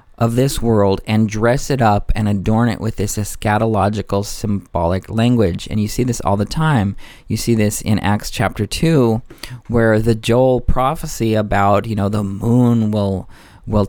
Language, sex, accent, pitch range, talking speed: English, male, American, 100-120 Hz, 175 wpm